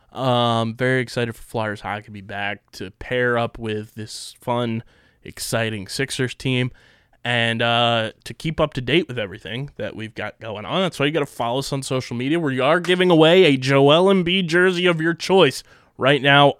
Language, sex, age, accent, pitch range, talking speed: English, male, 20-39, American, 120-145 Hz, 205 wpm